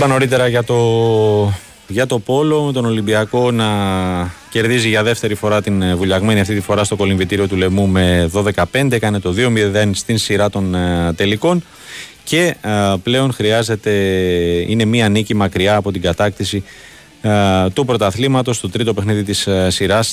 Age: 30-49